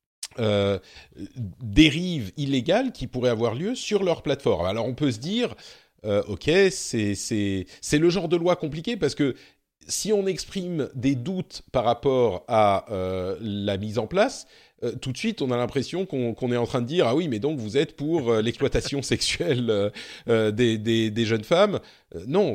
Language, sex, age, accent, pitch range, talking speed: French, male, 40-59, French, 115-165 Hz, 190 wpm